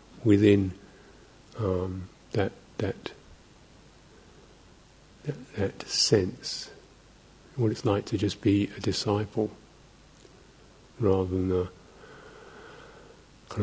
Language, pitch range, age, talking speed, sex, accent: English, 95-105 Hz, 50-69, 90 wpm, male, British